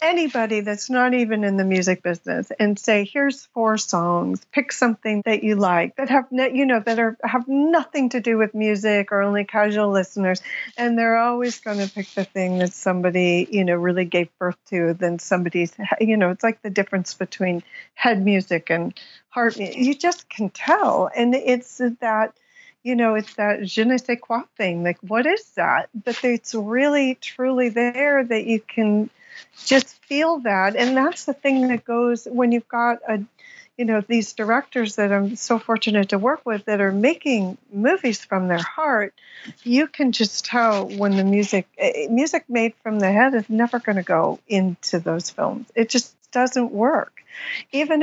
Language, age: English, 50-69